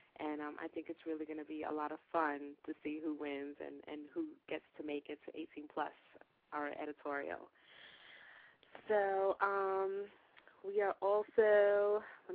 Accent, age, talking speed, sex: American, 20-39, 170 wpm, female